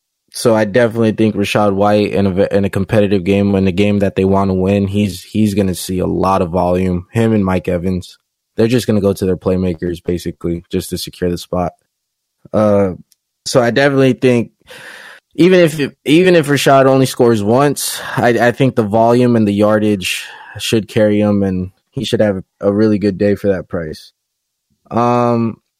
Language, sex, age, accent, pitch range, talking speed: English, male, 20-39, American, 100-125 Hz, 190 wpm